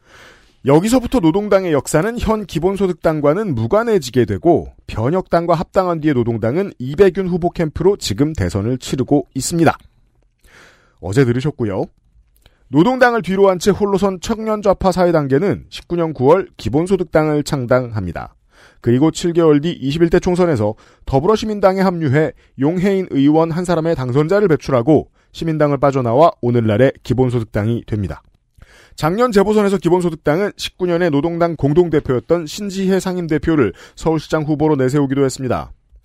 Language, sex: Korean, male